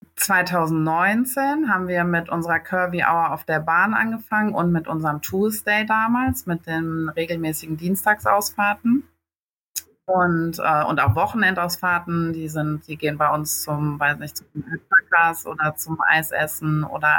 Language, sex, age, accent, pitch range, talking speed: German, female, 30-49, German, 150-170 Hz, 140 wpm